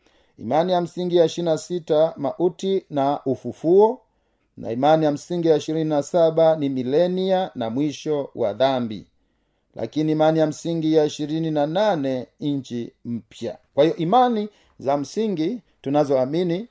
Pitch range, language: 130-170 Hz, Swahili